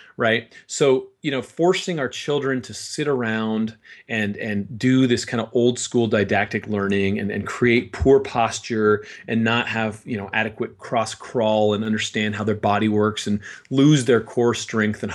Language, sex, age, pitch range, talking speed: English, male, 30-49, 105-135 Hz, 180 wpm